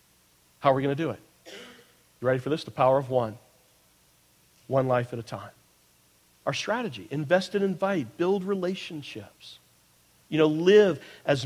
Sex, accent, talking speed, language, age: male, American, 155 wpm, English, 50-69